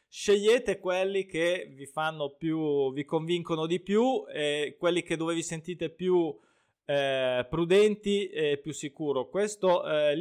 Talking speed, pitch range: 140 wpm, 135-170 Hz